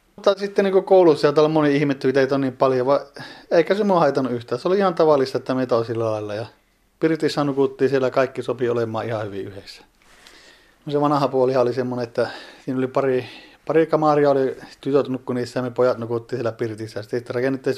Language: Finnish